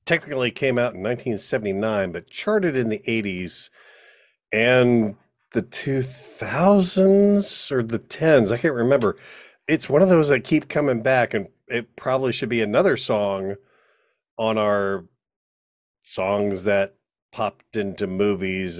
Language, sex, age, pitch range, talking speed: English, male, 40-59, 100-130 Hz, 130 wpm